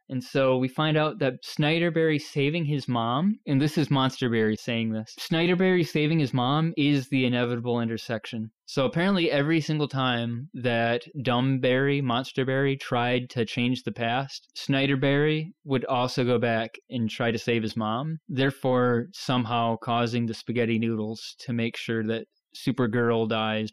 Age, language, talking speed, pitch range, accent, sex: 20-39, English, 150 wpm, 120-160 Hz, American, male